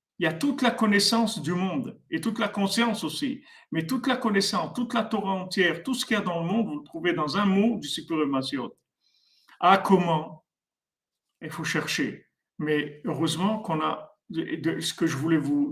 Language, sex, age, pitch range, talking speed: French, male, 50-69, 155-195 Hz, 200 wpm